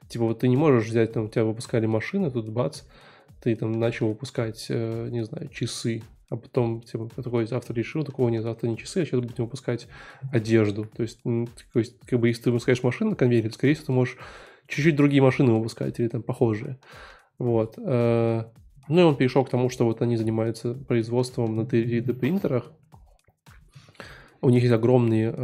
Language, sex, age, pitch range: Russian, male, 20-39, 115-135 Hz